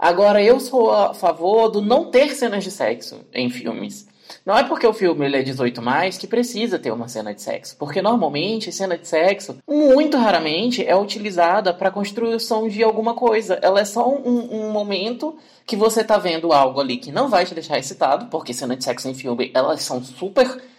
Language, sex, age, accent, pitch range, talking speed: Portuguese, male, 20-39, Brazilian, 180-255 Hz, 200 wpm